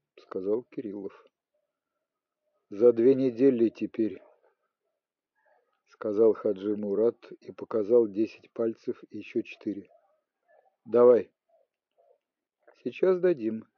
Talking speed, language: 85 wpm, Ukrainian